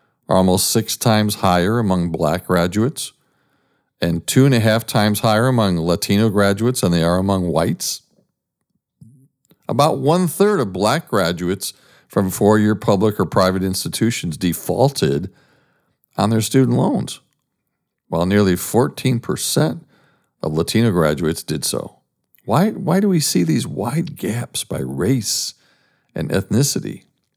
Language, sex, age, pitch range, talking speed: English, male, 50-69, 90-130 Hz, 135 wpm